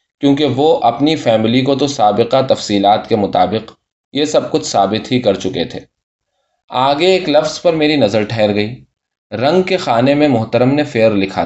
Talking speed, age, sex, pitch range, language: 180 wpm, 20-39, male, 110-145 Hz, Urdu